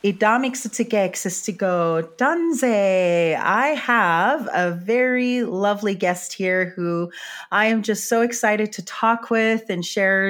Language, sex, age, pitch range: English, female, 30-49, 180-225 Hz